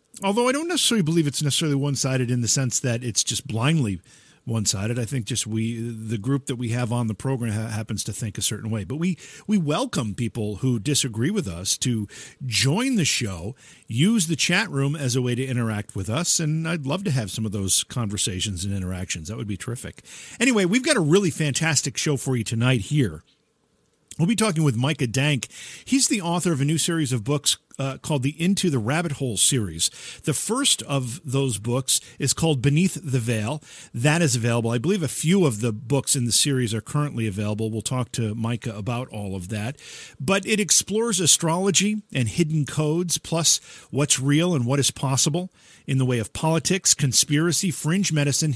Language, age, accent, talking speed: English, 50-69, American, 205 wpm